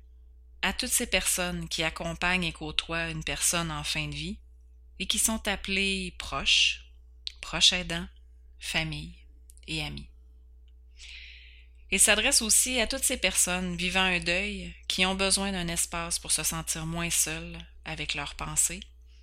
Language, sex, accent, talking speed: French, female, Canadian, 145 wpm